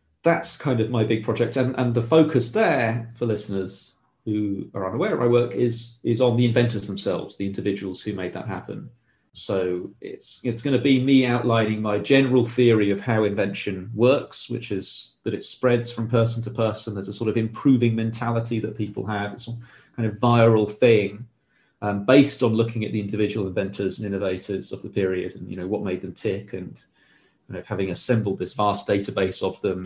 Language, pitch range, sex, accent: English, 100-125 Hz, male, British